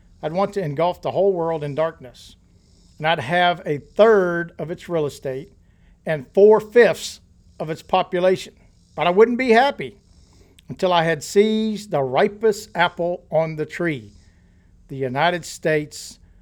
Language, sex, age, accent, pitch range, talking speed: English, male, 60-79, American, 140-180 Hz, 150 wpm